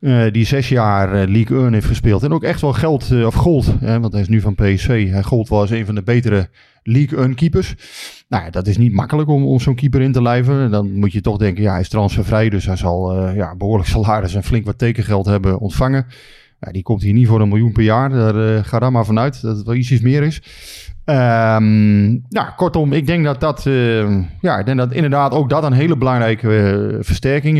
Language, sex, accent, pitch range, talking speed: Dutch, male, Dutch, 100-125 Hz, 235 wpm